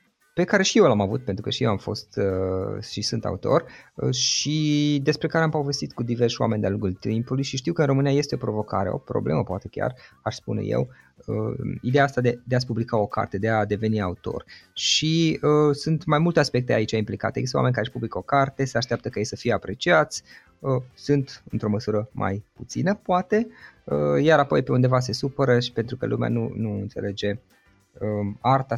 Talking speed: 195 wpm